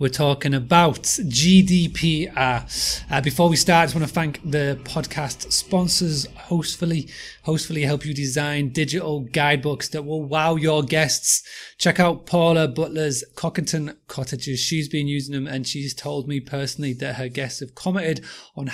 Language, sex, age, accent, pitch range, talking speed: English, male, 30-49, British, 135-160 Hz, 155 wpm